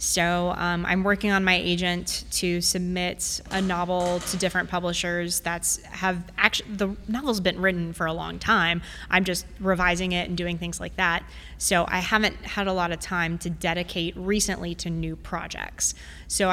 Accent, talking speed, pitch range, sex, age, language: American, 180 wpm, 170-185 Hz, female, 20-39, English